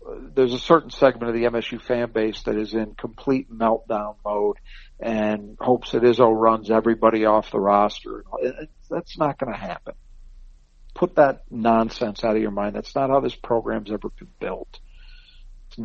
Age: 50-69